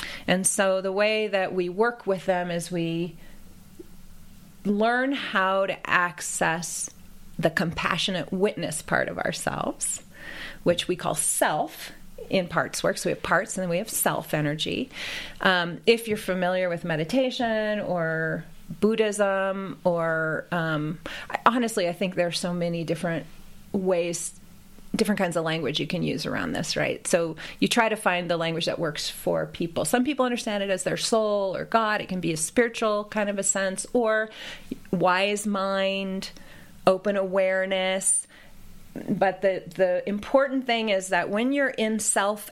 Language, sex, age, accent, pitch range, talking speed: English, female, 30-49, American, 175-210 Hz, 160 wpm